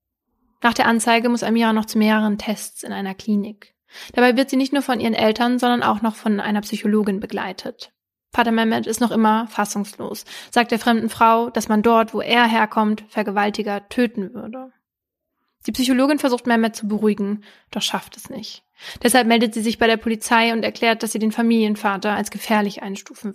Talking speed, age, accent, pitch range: 185 wpm, 20-39, German, 210-240 Hz